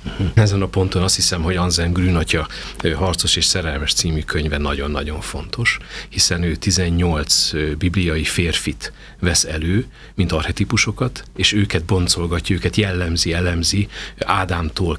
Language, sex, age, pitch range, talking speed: Hungarian, male, 40-59, 85-105 Hz, 125 wpm